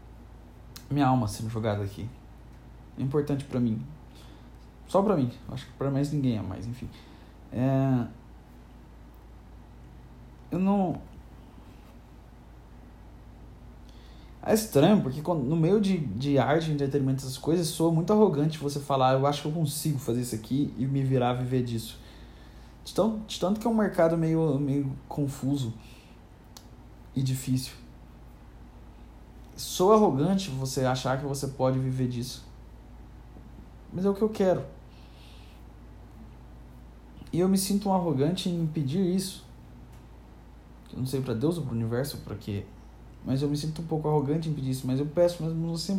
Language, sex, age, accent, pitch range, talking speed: Portuguese, male, 20-39, Brazilian, 115-160 Hz, 155 wpm